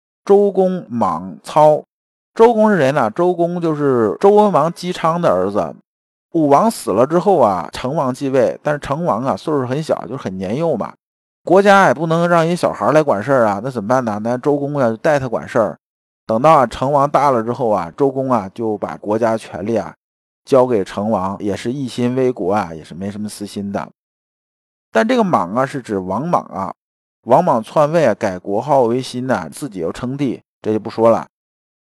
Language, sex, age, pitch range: Chinese, male, 50-69, 115-175 Hz